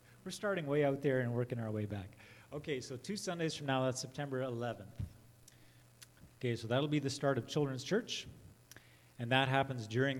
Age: 30-49